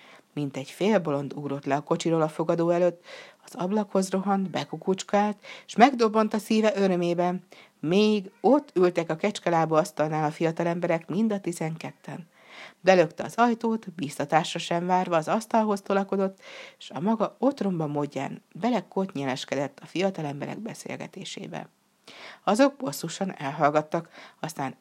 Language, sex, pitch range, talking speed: Hungarian, female, 155-210 Hz, 135 wpm